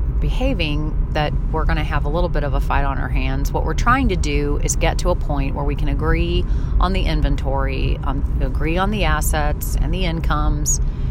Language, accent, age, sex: English, American, 30-49, female